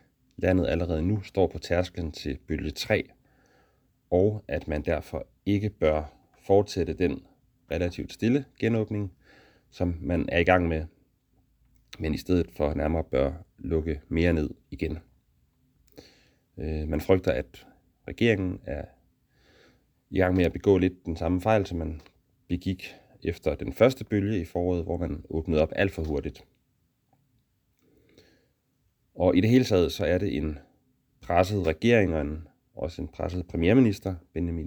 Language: English